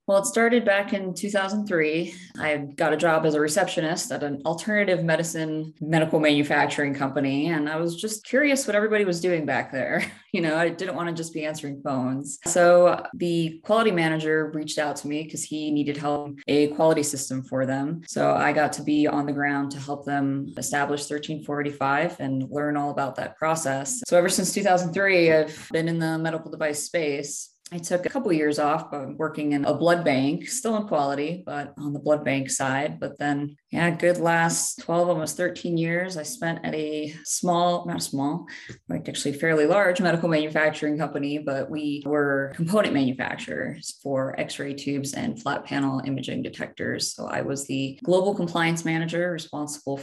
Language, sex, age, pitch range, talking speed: English, female, 20-39, 145-170 Hz, 185 wpm